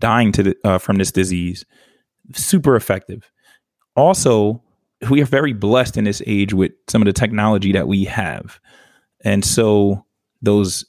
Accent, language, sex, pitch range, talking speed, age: American, English, male, 100-125 Hz, 155 wpm, 20-39